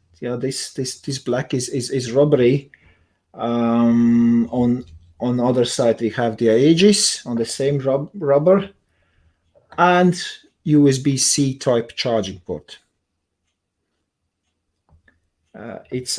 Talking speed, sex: 120 wpm, male